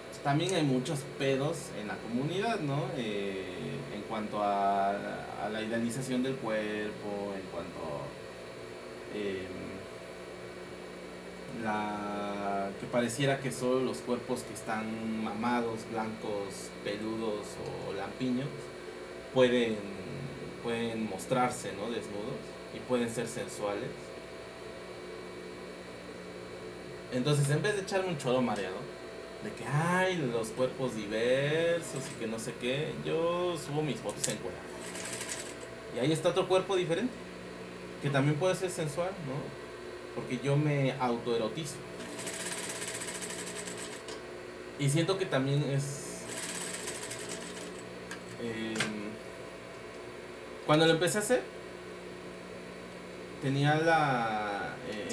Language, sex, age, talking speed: English, male, 30-49, 105 wpm